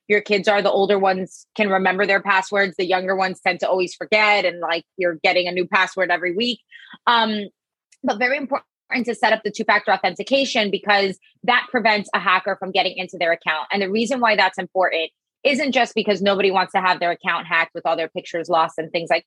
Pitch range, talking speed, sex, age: 190-235 Hz, 220 wpm, female, 20-39